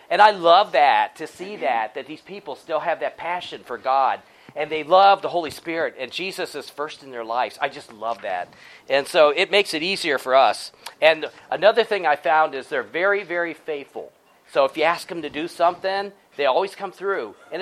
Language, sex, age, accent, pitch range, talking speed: English, male, 40-59, American, 145-195 Hz, 220 wpm